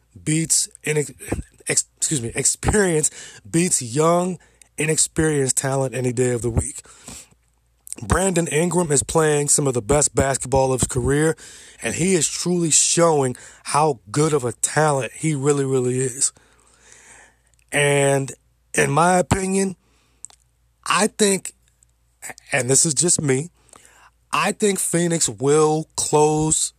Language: English